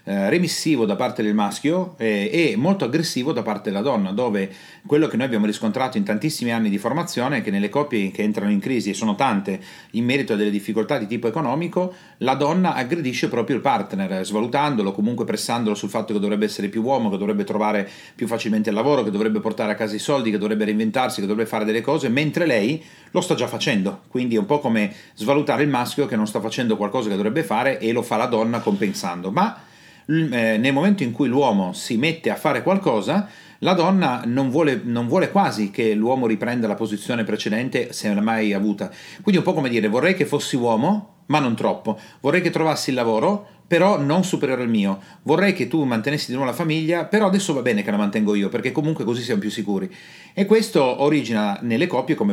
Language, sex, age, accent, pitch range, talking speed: Italian, male, 40-59, native, 110-165 Hz, 215 wpm